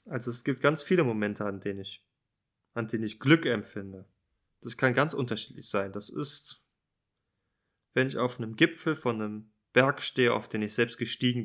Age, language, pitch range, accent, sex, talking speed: 20-39, German, 110-140 Hz, German, male, 175 wpm